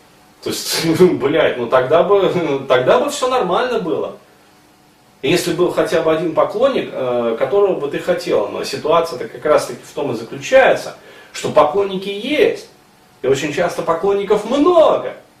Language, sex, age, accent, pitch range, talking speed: Russian, male, 30-49, native, 160-210 Hz, 150 wpm